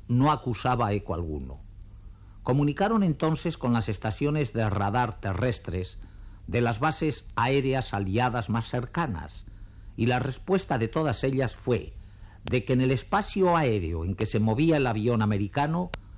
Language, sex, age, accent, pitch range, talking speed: Spanish, male, 50-69, Spanish, 100-155 Hz, 145 wpm